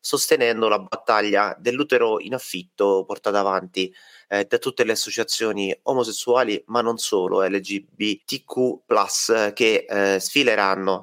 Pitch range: 100-130 Hz